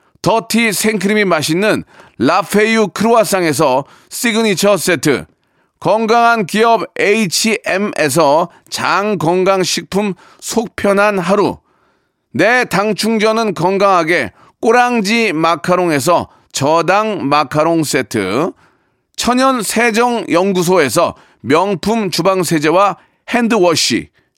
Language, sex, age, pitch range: Korean, male, 40-59, 180-230 Hz